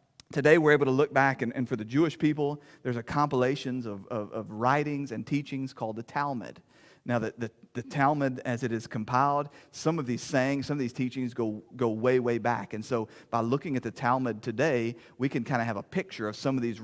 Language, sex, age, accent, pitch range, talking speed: English, male, 40-59, American, 120-145 Hz, 230 wpm